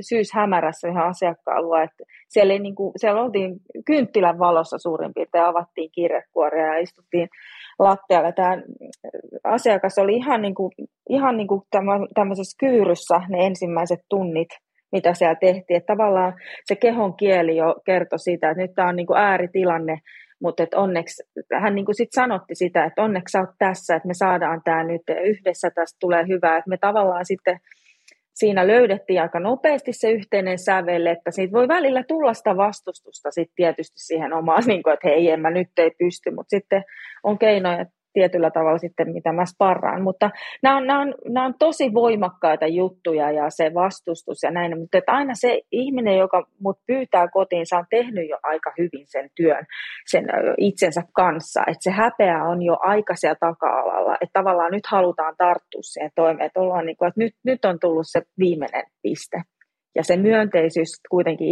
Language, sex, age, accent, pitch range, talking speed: Finnish, female, 30-49, native, 170-205 Hz, 170 wpm